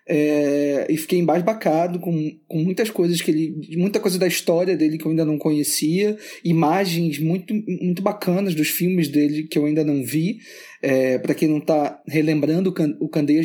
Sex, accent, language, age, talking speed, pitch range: male, Brazilian, Portuguese, 20-39, 185 wpm, 145-175 Hz